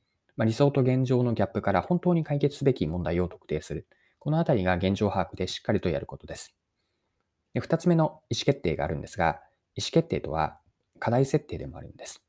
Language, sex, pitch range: Japanese, male, 90-130 Hz